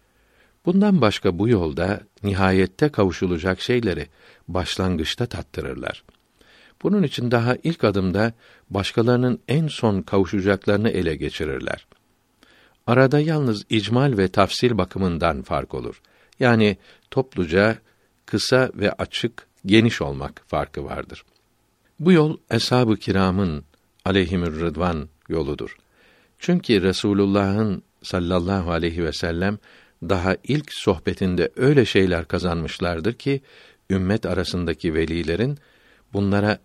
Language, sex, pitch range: Turkish, male, 90-115 Hz